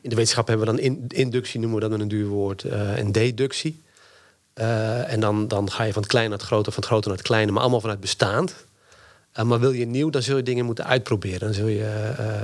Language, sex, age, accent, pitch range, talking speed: Dutch, male, 40-59, Dutch, 110-125 Hz, 270 wpm